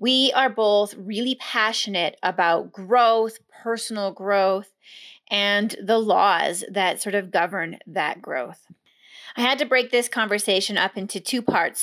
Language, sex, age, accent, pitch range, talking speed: English, female, 30-49, American, 180-220 Hz, 140 wpm